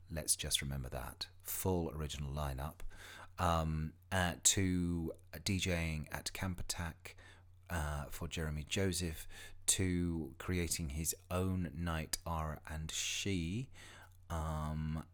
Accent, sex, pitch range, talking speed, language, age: British, male, 80-95 Hz, 105 wpm, English, 30-49